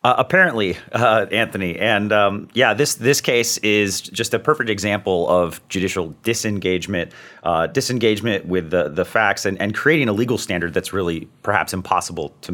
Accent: American